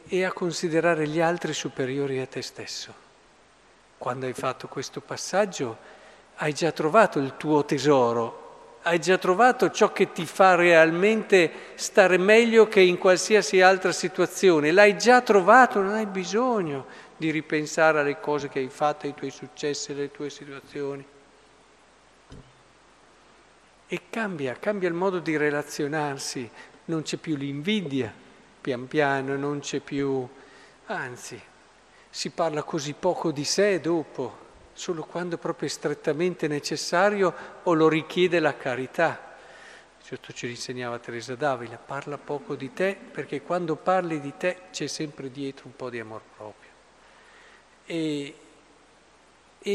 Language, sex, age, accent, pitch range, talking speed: Italian, male, 50-69, native, 140-180 Hz, 135 wpm